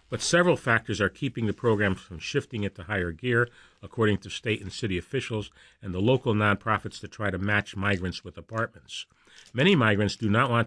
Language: English